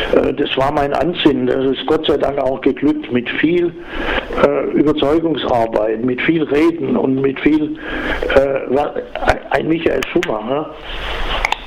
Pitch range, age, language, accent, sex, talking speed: 130-160 Hz, 60-79, German, German, male, 125 wpm